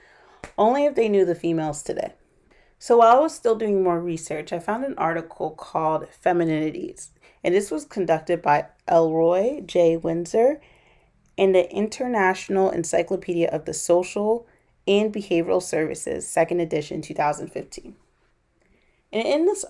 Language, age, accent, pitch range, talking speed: English, 30-49, American, 165-200 Hz, 135 wpm